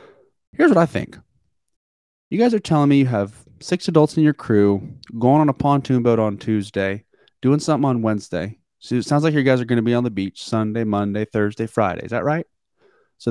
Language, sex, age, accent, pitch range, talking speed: English, male, 30-49, American, 110-150 Hz, 215 wpm